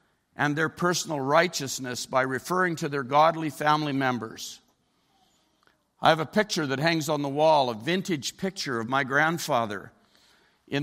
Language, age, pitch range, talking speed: English, 50-69, 120-155 Hz, 150 wpm